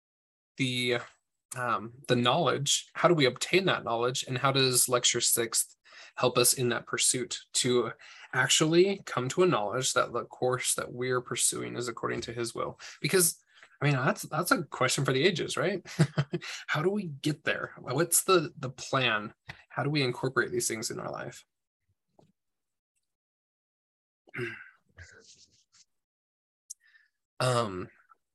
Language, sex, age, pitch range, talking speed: English, male, 20-39, 120-150 Hz, 140 wpm